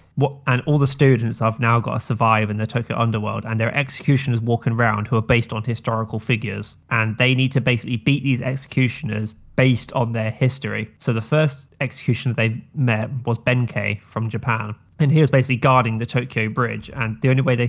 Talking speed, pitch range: 205 wpm, 110-130 Hz